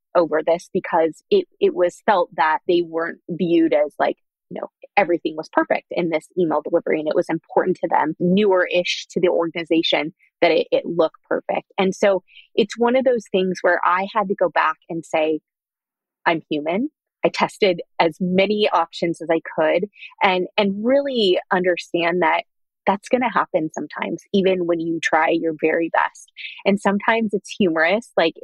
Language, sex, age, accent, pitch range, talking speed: English, female, 20-39, American, 165-205 Hz, 175 wpm